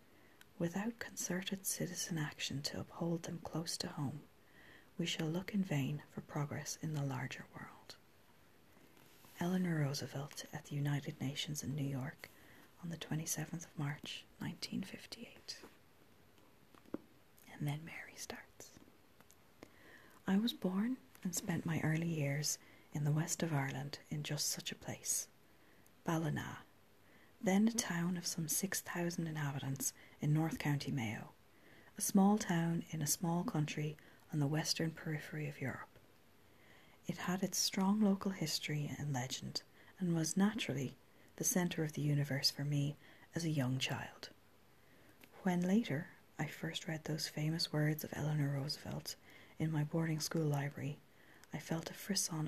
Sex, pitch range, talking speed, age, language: female, 145-175 Hz, 145 wpm, 40-59, English